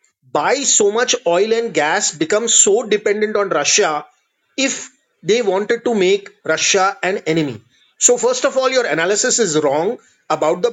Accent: Indian